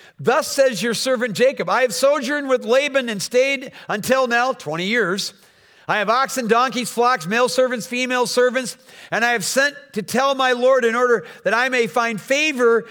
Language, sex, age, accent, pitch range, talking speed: English, male, 50-69, American, 180-245 Hz, 185 wpm